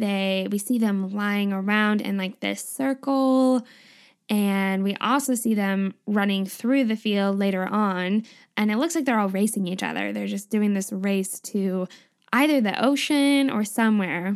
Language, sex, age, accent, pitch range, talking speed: English, female, 10-29, American, 200-245 Hz, 170 wpm